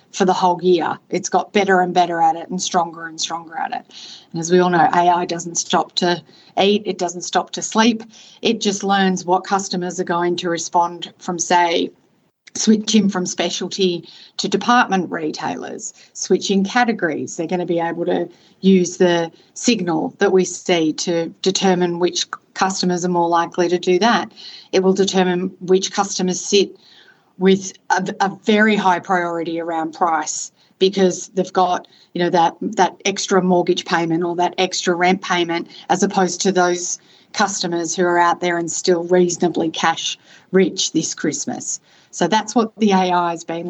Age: 30-49